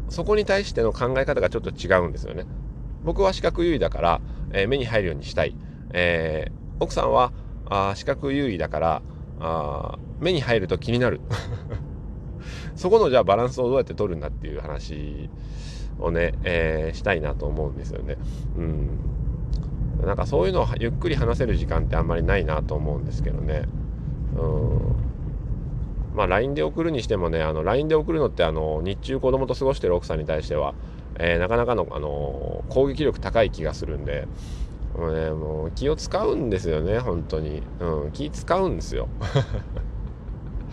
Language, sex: Japanese, male